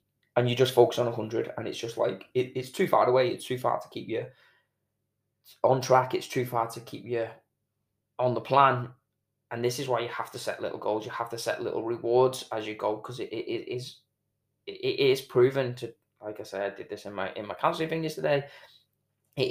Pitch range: 110-130 Hz